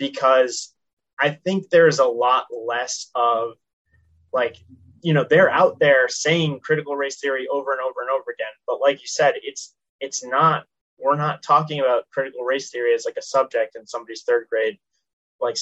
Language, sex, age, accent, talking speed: English, male, 20-39, American, 180 wpm